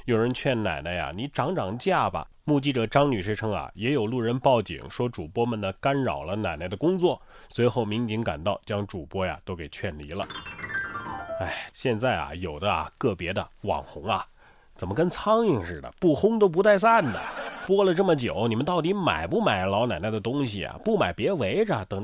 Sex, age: male, 30-49